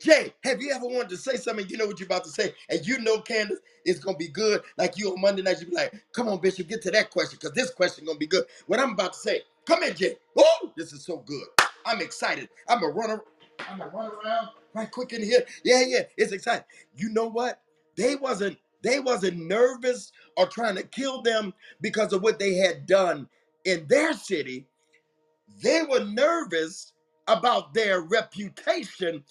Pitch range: 170-240 Hz